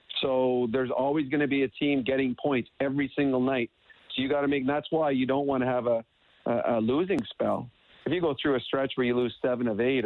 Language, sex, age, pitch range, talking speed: English, male, 40-59, 120-145 Hz, 250 wpm